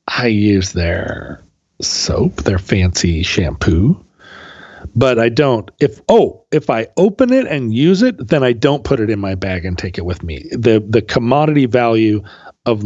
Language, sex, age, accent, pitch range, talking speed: English, male, 40-59, American, 95-130 Hz, 175 wpm